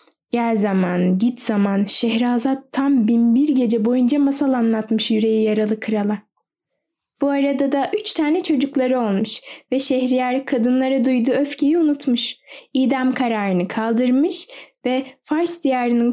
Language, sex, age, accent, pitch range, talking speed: Turkish, female, 10-29, native, 225-270 Hz, 125 wpm